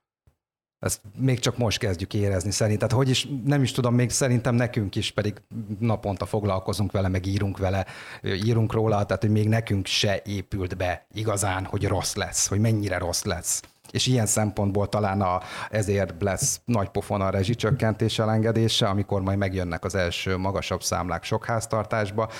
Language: Hungarian